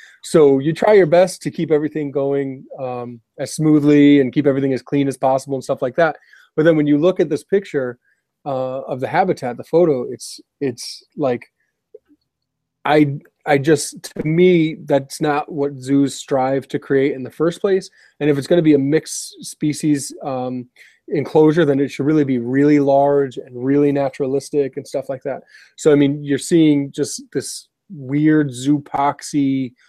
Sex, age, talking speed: male, 30-49, 180 wpm